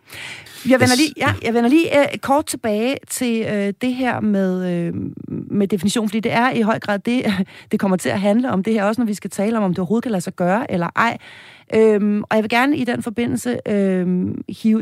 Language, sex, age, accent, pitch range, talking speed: Danish, female, 30-49, native, 185-230 Hz, 215 wpm